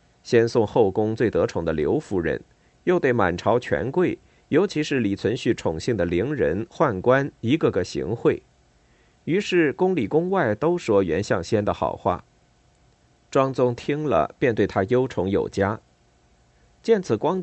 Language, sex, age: Chinese, male, 50-69